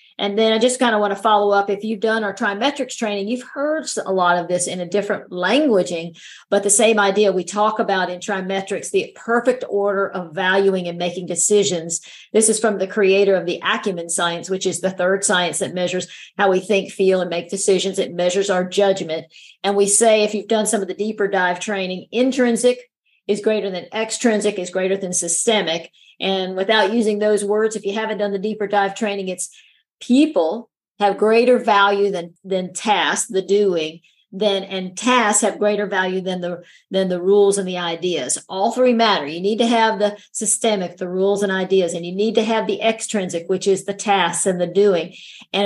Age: 50-69